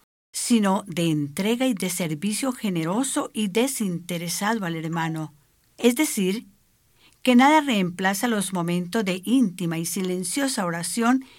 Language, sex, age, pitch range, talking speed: English, female, 50-69, 170-245 Hz, 120 wpm